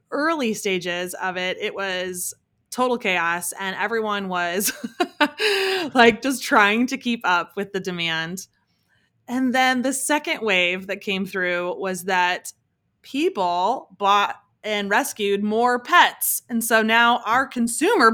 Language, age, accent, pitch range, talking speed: English, 20-39, American, 185-230 Hz, 135 wpm